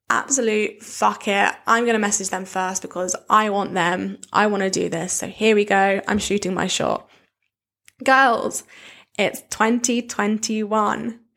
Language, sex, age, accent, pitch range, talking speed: English, female, 10-29, British, 205-245 Hz, 150 wpm